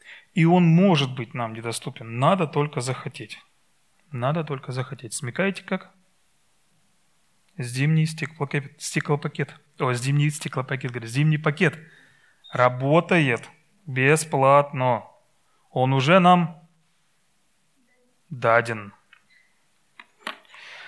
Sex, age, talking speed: male, 30-49, 85 wpm